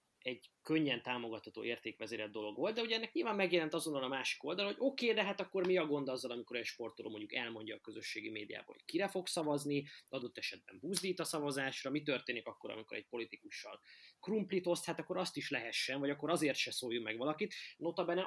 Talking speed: 205 wpm